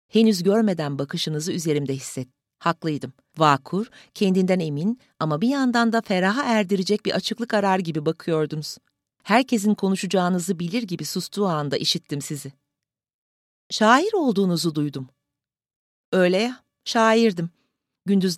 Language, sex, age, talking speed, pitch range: Turkish, female, 40-59, 115 wpm, 150-205 Hz